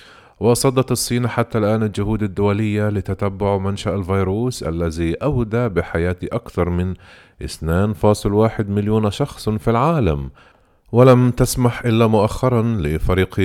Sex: male